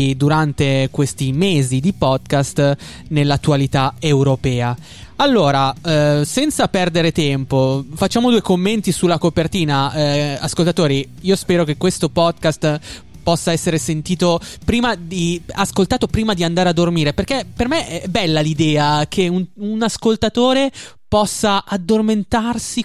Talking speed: 125 wpm